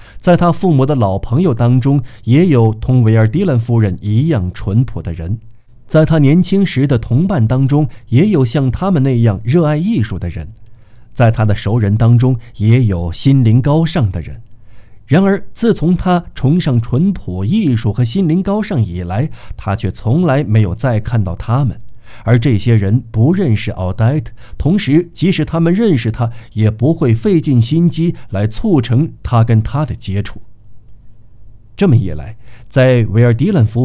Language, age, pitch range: Chinese, 50-69, 110-145 Hz